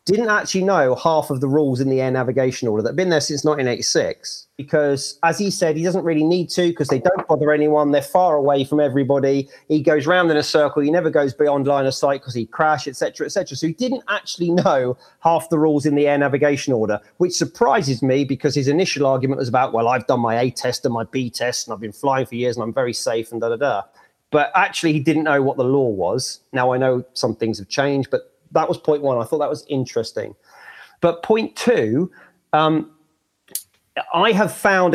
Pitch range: 135-170 Hz